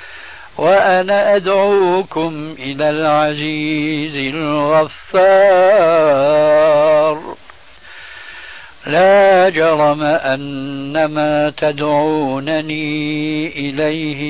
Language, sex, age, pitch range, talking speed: Arabic, male, 60-79, 150-160 Hz, 45 wpm